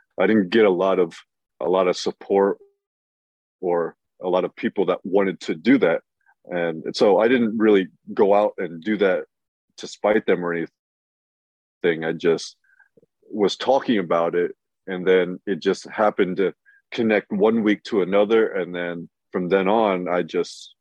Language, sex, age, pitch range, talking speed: English, male, 30-49, 85-110 Hz, 170 wpm